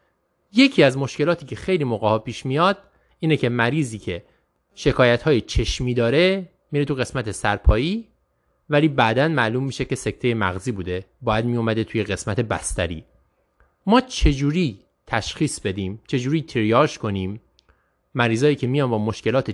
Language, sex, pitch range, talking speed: Persian, male, 110-150 Hz, 140 wpm